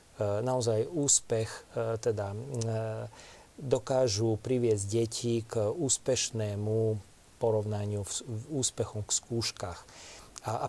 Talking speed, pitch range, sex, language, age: 85 wpm, 110-125 Hz, male, Slovak, 40-59